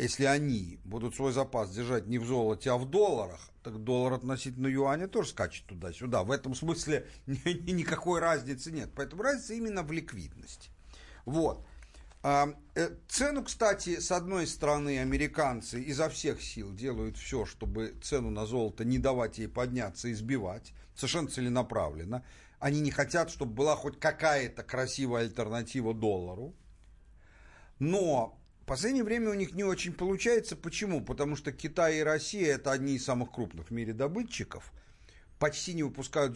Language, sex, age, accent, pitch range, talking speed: Russian, male, 50-69, native, 120-165 Hz, 150 wpm